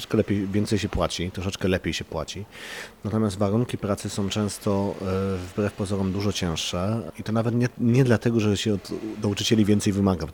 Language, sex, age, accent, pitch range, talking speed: Polish, male, 30-49, native, 95-115 Hz, 175 wpm